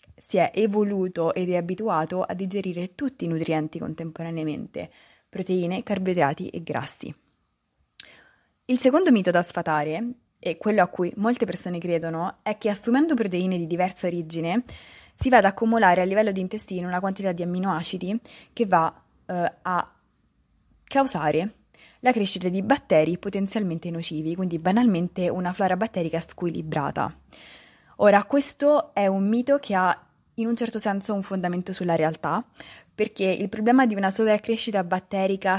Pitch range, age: 175-210 Hz, 20-39